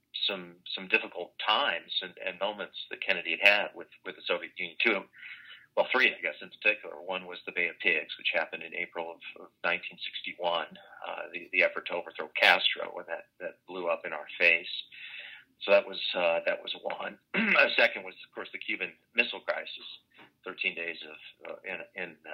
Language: English